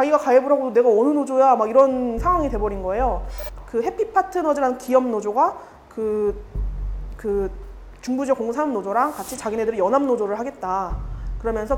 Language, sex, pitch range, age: Korean, female, 210-295 Hz, 20-39